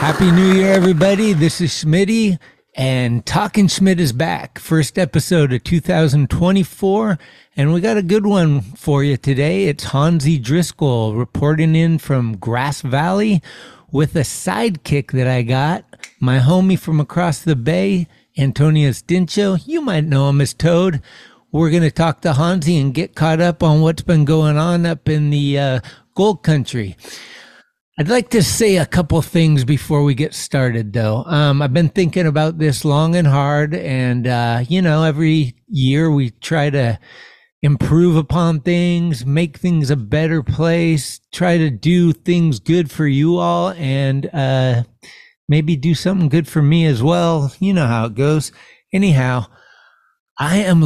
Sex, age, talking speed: male, 60-79, 165 wpm